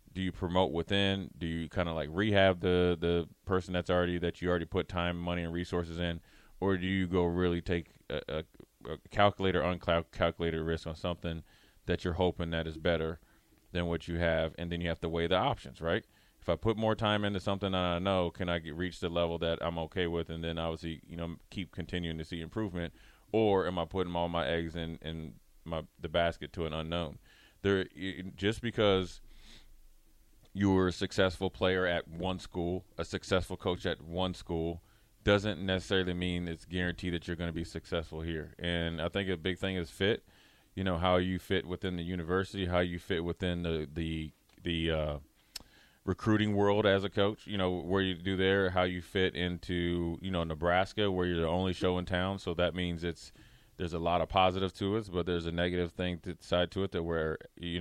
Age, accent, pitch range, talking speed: 30-49, American, 85-95 Hz, 210 wpm